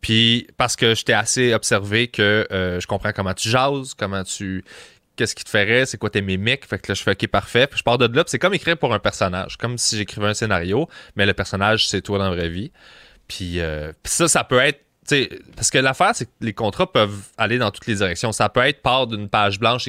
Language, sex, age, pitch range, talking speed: English, male, 20-39, 100-120 Hz, 255 wpm